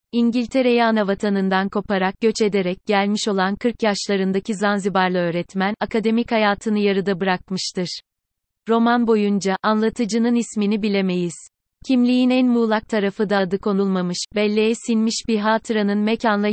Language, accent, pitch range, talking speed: Turkish, native, 195-230 Hz, 120 wpm